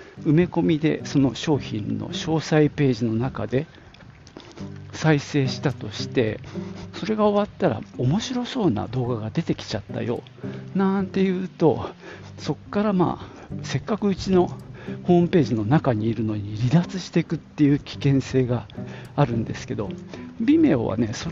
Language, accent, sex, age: Japanese, native, male, 50-69